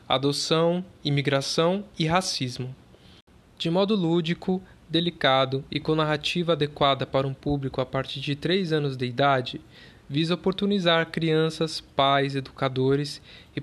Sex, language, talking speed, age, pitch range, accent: male, Portuguese, 125 wpm, 20-39, 140-170 Hz, Brazilian